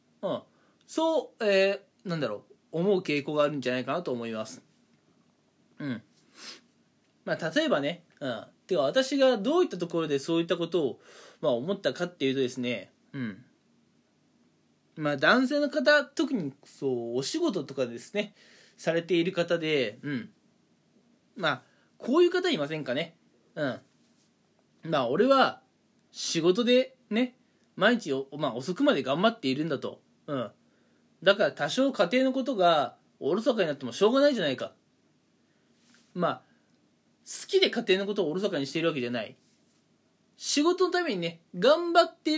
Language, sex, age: Japanese, male, 20-39